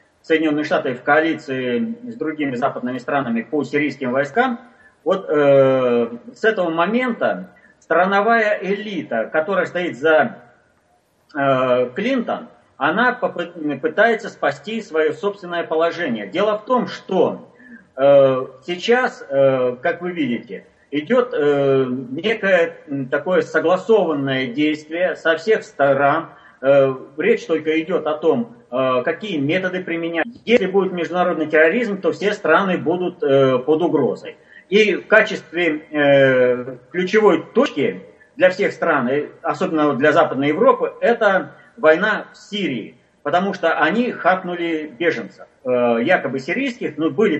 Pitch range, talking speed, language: 145-210 Hz, 115 wpm, Russian